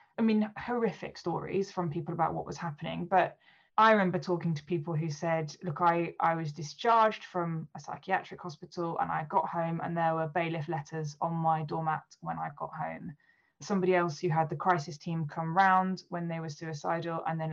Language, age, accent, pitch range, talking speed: English, 10-29, British, 160-185 Hz, 200 wpm